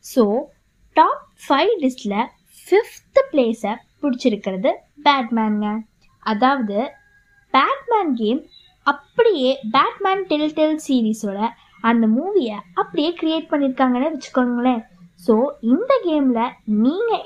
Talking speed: 85 wpm